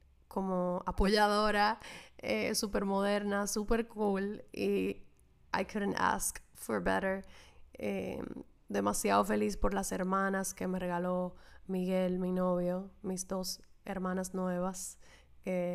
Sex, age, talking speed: female, 10-29, 115 wpm